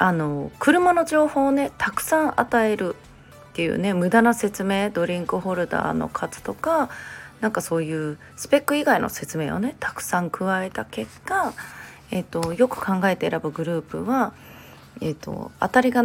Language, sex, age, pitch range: Japanese, female, 30-49, 170-255 Hz